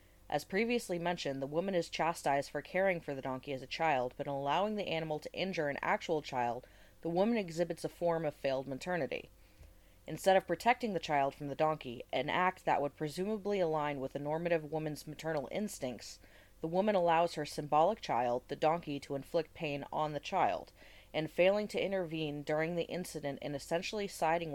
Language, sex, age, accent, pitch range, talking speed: English, female, 20-39, American, 140-170 Hz, 190 wpm